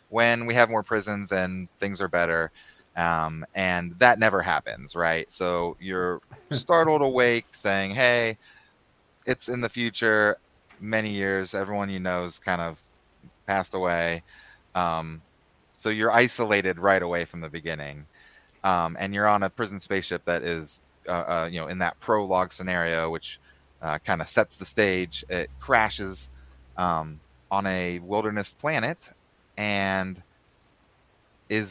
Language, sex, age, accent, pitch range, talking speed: English, male, 30-49, American, 85-110 Hz, 145 wpm